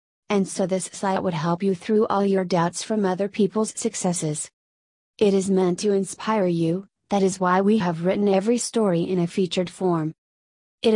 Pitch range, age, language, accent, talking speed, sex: 175-205 Hz, 30-49, English, American, 185 wpm, female